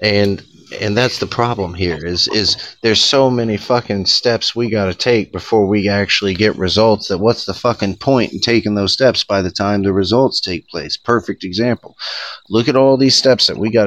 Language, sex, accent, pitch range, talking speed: English, male, American, 95-115 Hz, 210 wpm